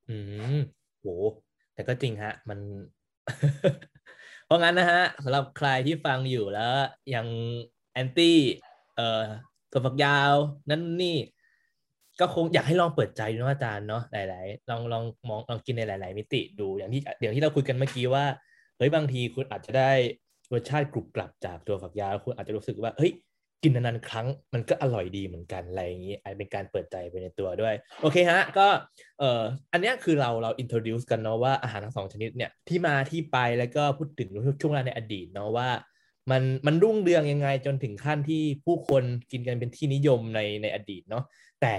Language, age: Thai, 20-39